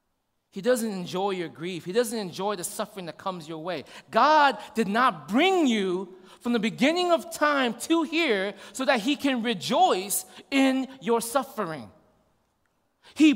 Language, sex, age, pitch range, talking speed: English, male, 30-49, 210-275 Hz, 155 wpm